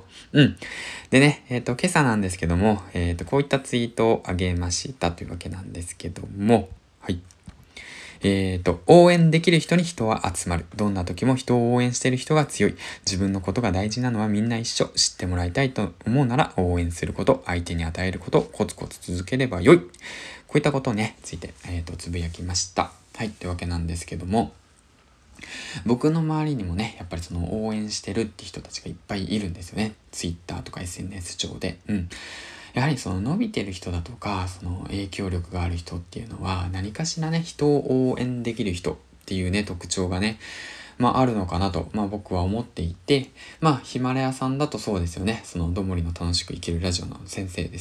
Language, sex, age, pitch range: Japanese, male, 20-39, 90-115 Hz